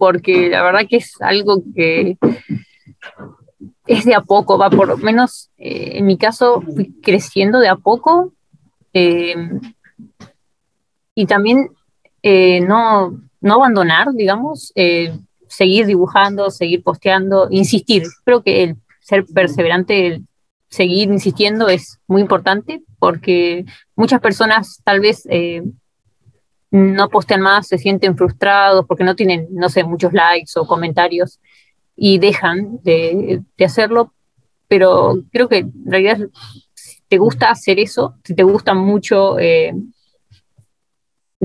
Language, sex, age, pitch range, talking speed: Spanish, female, 20-39, 180-215 Hz, 130 wpm